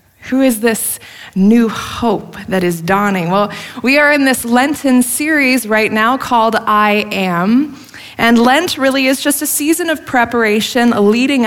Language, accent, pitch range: English, American, 205-265 Hz